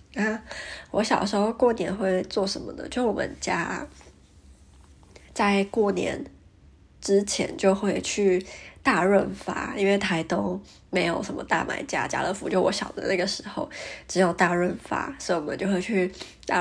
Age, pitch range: 20-39, 175-205 Hz